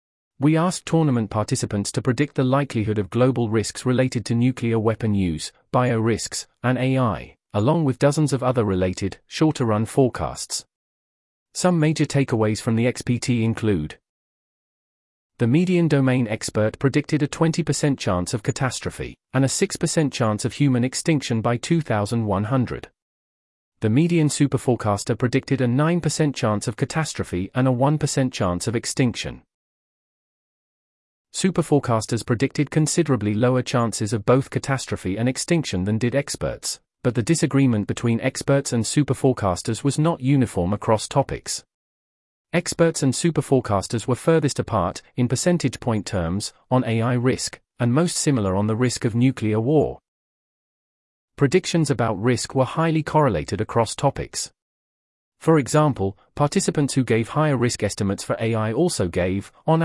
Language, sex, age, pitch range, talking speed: English, male, 40-59, 110-145 Hz, 140 wpm